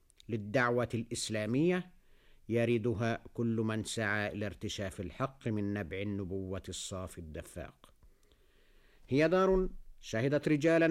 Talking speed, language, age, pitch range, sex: 95 wpm, Arabic, 50-69, 100-140 Hz, male